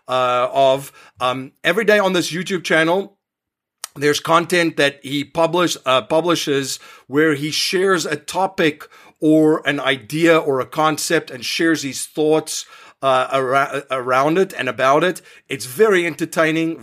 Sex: male